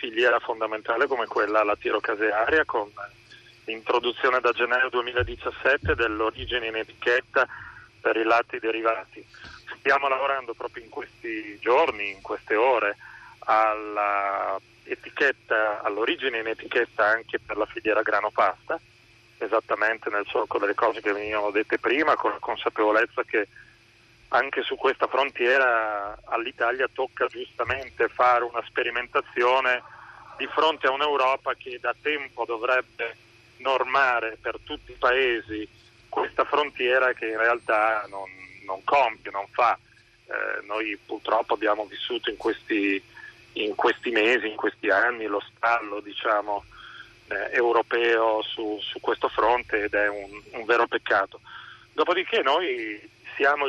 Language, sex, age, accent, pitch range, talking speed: Italian, male, 30-49, native, 110-135 Hz, 125 wpm